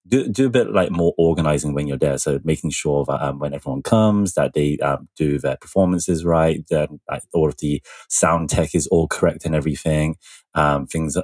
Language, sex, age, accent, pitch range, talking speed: English, male, 20-39, British, 75-85 Hz, 210 wpm